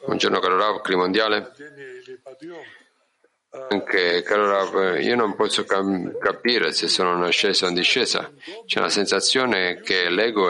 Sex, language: male, Italian